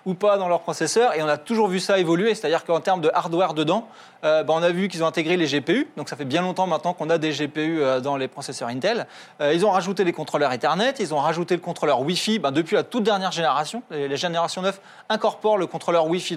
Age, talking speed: 20-39, 250 wpm